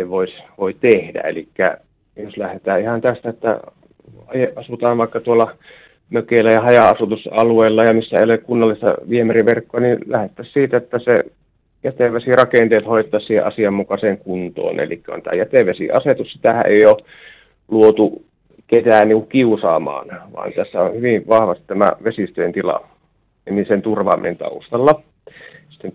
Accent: native